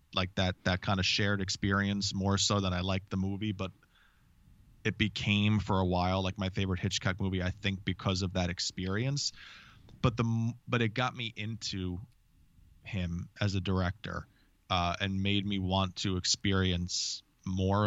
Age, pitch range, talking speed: 20-39, 95-105 Hz, 170 wpm